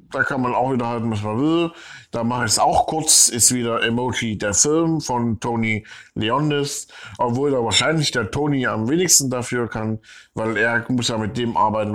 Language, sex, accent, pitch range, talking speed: German, male, German, 110-130 Hz, 195 wpm